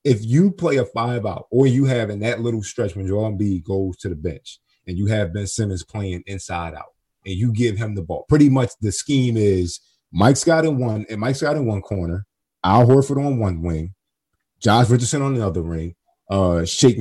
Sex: male